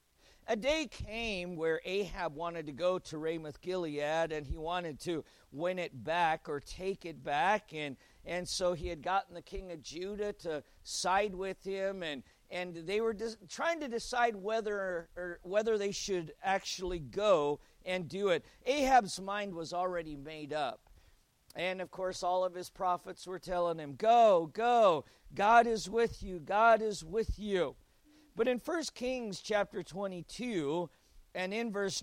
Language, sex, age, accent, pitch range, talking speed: English, male, 50-69, American, 160-210 Hz, 165 wpm